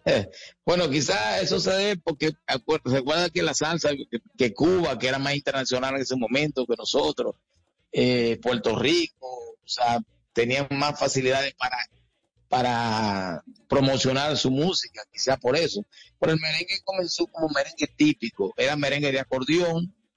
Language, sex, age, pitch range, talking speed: English, male, 50-69, 125-160 Hz, 150 wpm